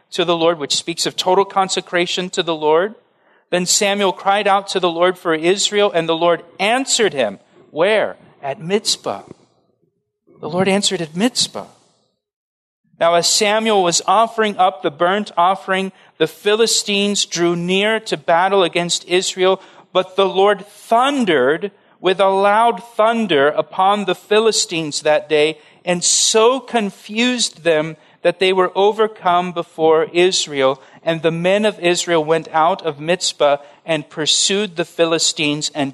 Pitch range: 165-205 Hz